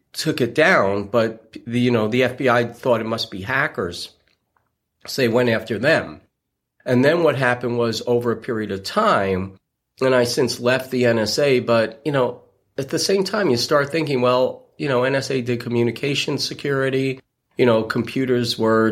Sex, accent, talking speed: male, American, 180 wpm